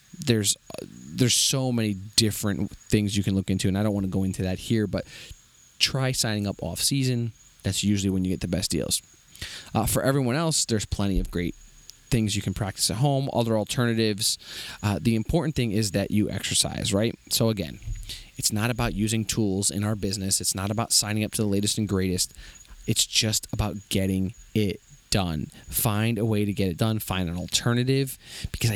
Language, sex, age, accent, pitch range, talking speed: English, male, 20-39, American, 100-120 Hz, 195 wpm